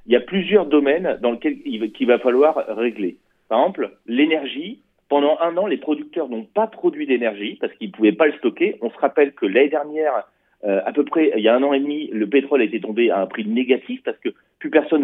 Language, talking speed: Italian, 250 wpm